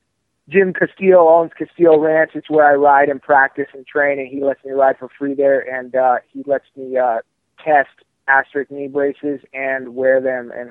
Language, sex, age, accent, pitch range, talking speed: English, male, 20-39, American, 135-150 Hz, 195 wpm